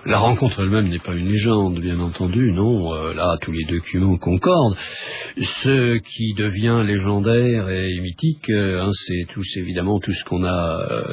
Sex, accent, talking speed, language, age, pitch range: male, French, 175 wpm, French, 50-69, 90-115 Hz